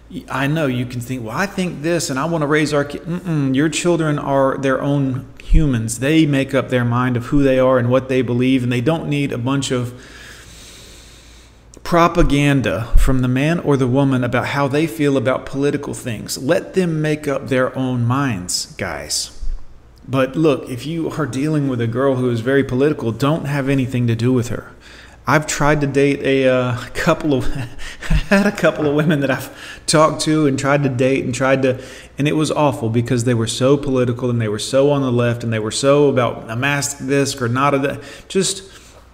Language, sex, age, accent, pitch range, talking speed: English, male, 40-59, American, 125-145 Hz, 215 wpm